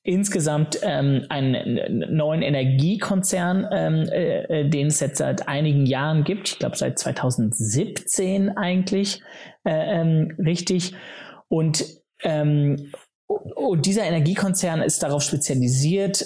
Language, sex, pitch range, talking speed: German, male, 140-185 Hz, 110 wpm